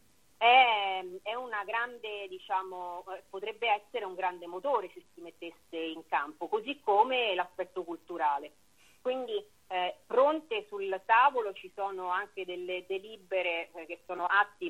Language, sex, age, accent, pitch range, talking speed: Italian, female, 30-49, native, 170-205 Hz, 130 wpm